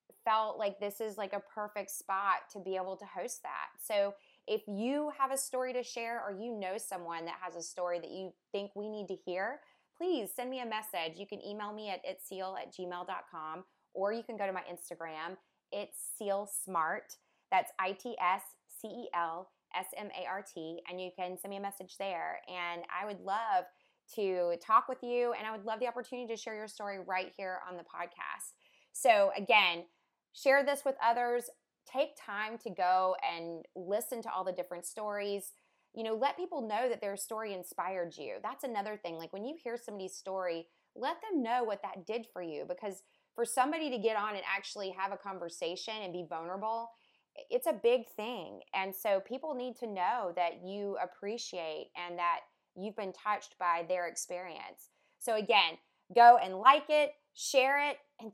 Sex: female